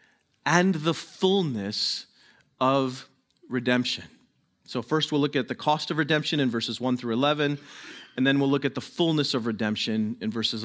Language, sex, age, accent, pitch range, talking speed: English, male, 40-59, American, 115-165 Hz, 170 wpm